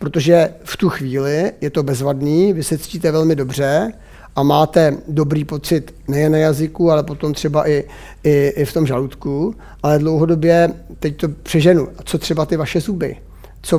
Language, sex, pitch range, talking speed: Czech, male, 145-175 Hz, 170 wpm